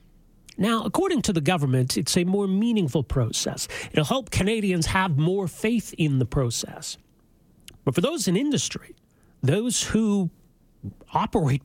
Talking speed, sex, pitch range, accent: 140 wpm, male, 130-175 Hz, American